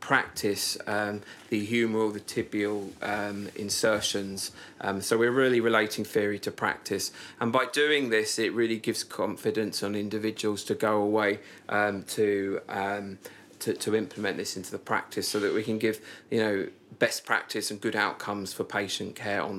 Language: English